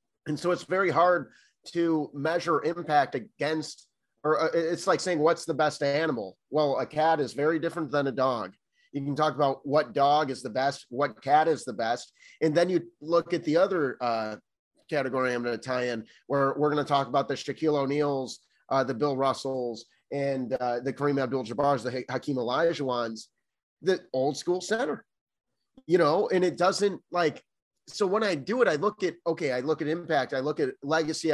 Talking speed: 195 wpm